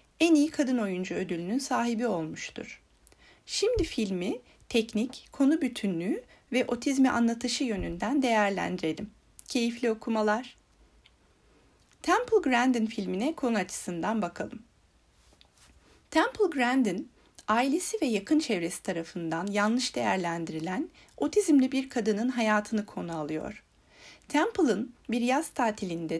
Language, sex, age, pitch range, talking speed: Turkish, female, 40-59, 200-265 Hz, 100 wpm